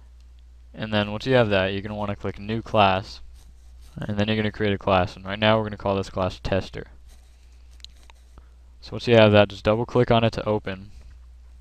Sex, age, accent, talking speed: male, 20-39, American, 205 wpm